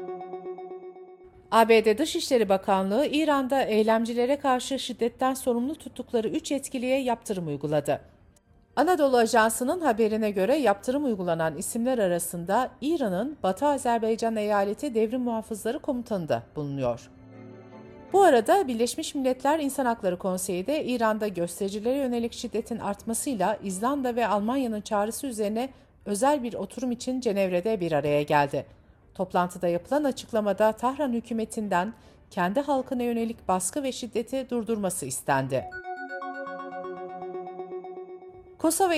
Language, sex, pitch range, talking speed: Turkish, female, 190-260 Hz, 110 wpm